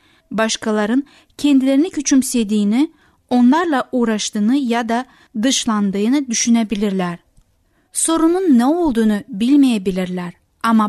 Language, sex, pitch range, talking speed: Turkish, female, 210-270 Hz, 75 wpm